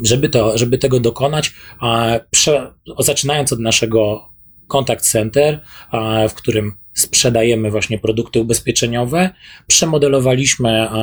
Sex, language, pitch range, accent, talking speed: male, Polish, 115-145 Hz, native, 95 wpm